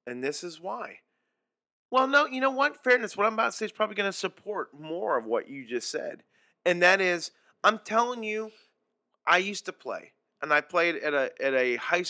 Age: 40-59